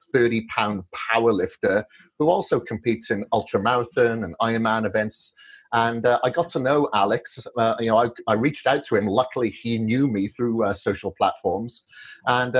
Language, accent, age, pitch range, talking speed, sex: English, British, 30-49, 105-130 Hz, 175 wpm, male